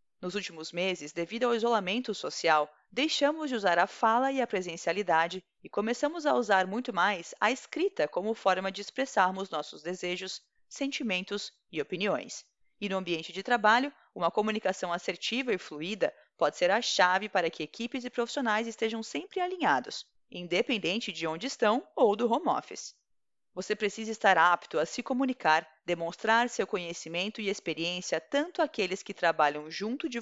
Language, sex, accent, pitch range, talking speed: Portuguese, female, Brazilian, 180-250 Hz, 160 wpm